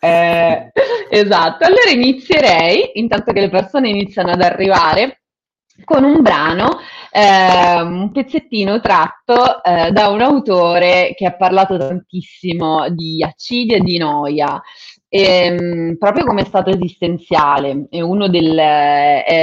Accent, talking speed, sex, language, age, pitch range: native, 125 wpm, female, Italian, 30-49, 165-250 Hz